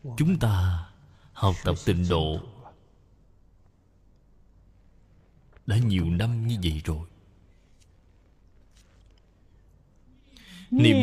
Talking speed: 70 wpm